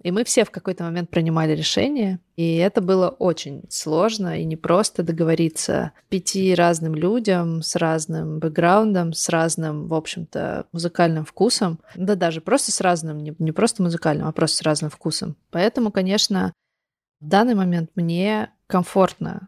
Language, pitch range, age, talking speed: Russian, 165-190 Hz, 20-39, 150 wpm